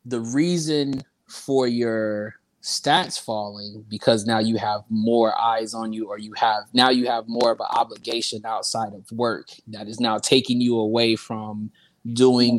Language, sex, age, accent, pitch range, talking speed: English, male, 20-39, American, 110-130 Hz, 165 wpm